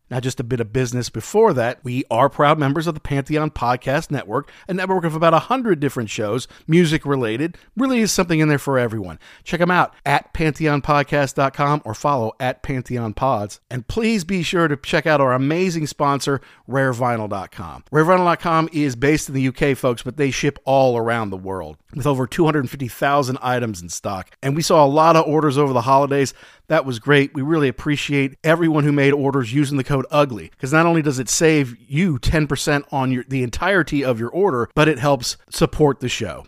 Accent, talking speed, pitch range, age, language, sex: American, 190 wpm, 130-155 Hz, 50-69, English, male